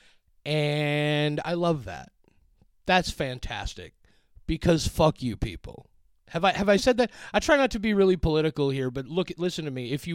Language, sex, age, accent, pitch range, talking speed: English, male, 30-49, American, 130-170 Hz, 185 wpm